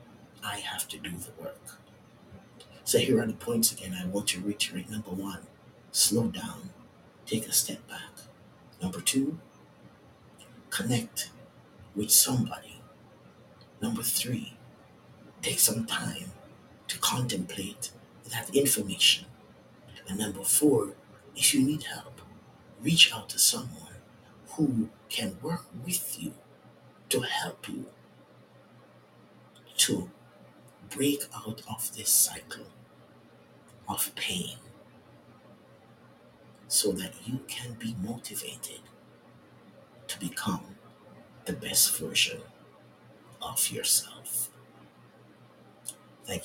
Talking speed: 100 wpm